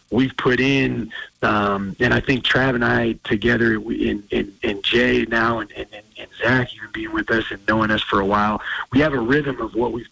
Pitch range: 110-130 Hz